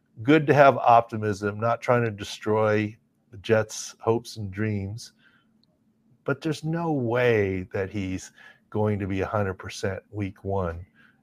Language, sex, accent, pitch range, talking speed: English, male, American, 100-125 Hz, 135 wpm